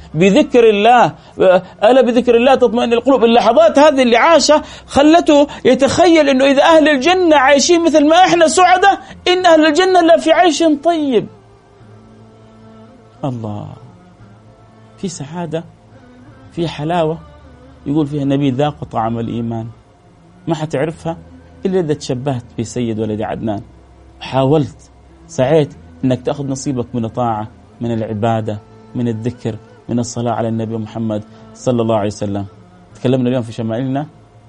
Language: Arabic